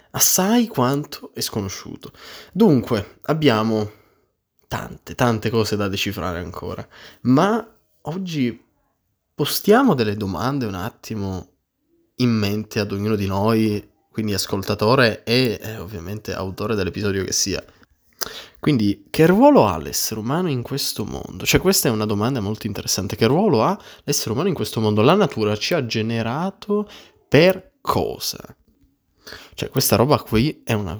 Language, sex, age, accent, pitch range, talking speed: Italian, male, 20-39, native, 105-140 Hz, 140 wpm